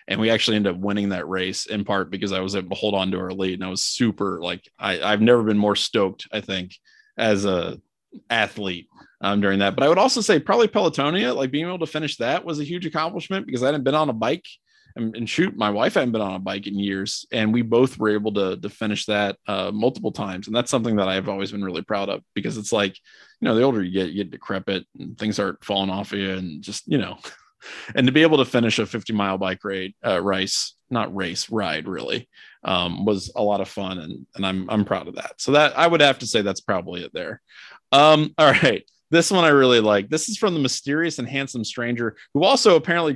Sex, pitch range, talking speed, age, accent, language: male, 100-165 Hz, 250 wpm, 20-39, American, English